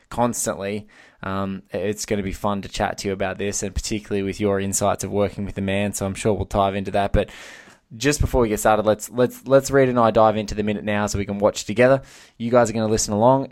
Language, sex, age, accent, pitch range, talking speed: English, male, 20-39, Australian, 100-115 Hz, 260 wpm